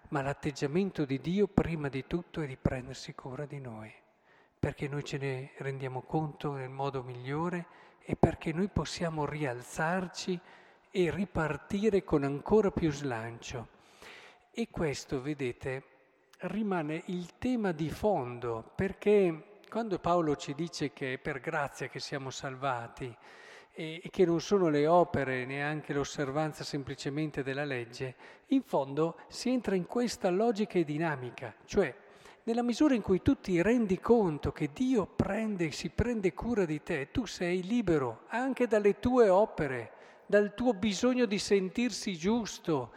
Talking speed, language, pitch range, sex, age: 145 wpm, Italian, 140-205 Hz, male, 50-69